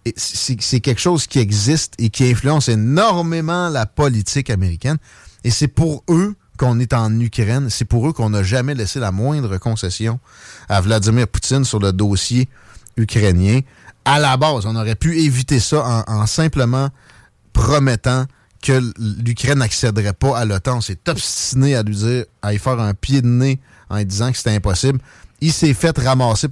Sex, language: male, French